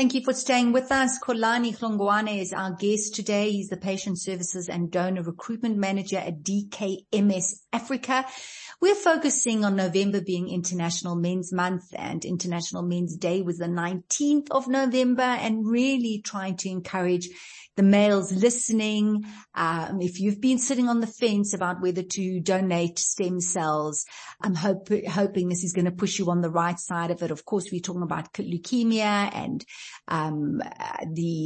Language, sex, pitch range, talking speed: English, female, 175-225 Hz, 165 wpm